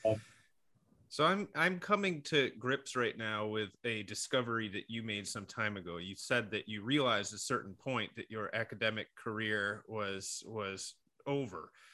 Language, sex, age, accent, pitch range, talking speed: English, male, 30-49, American, 105-135 Hz, 165 wpm